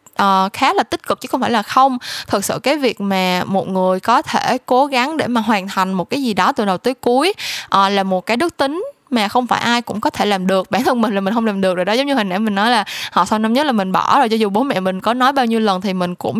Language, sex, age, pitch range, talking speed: Vietnamese, female, 10-29, 195-260 Hz, 315 wpm